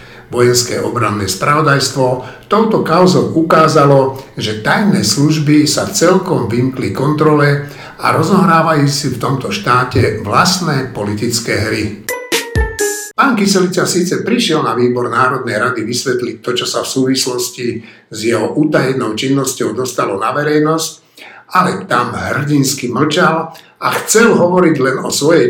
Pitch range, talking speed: 125-180 Hz, 125 wpm